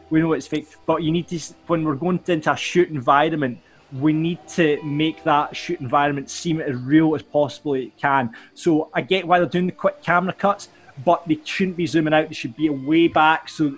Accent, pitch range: British, 145-165 Hz